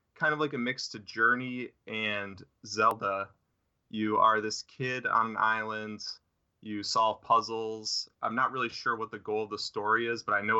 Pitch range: 100-125 Hz